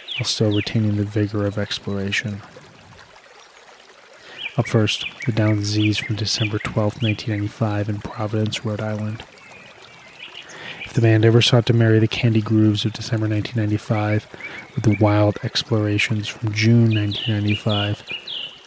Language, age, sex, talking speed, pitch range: English, 20-39, male, 130 wpm, 105-115 Hz